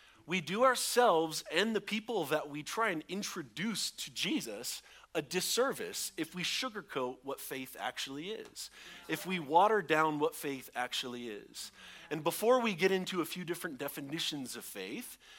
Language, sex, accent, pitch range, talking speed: English, male, American, 135-195 Hz, 160 wpm